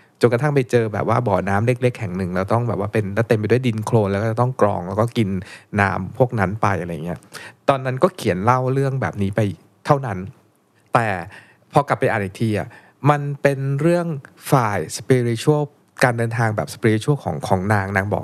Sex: male